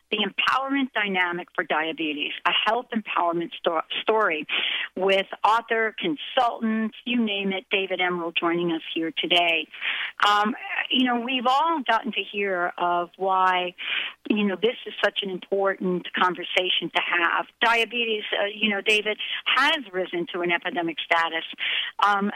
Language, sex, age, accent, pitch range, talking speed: English, female, 50-69, American, 180-230 Hz, 145 wpm